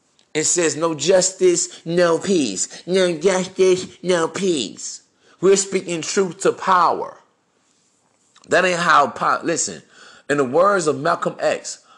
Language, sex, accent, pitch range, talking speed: English, male, American, 160-205 Hz, 130 wpm